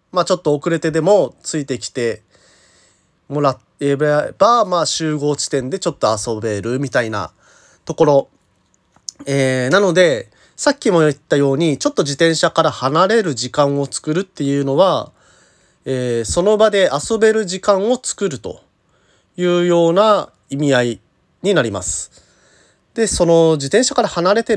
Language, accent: Japanese, native